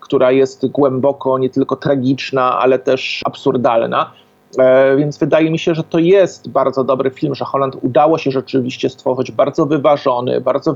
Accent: native